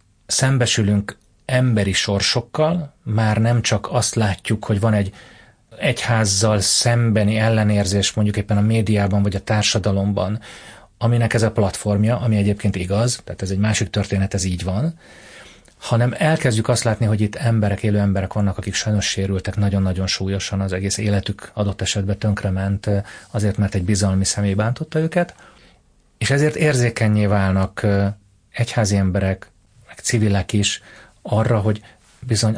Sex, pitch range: male, 100-115 Hz